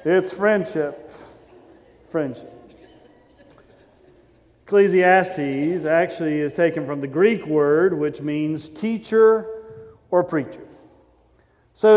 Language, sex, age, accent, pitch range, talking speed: English, male, 50-69, American, 160-215 Hz, 85 wpm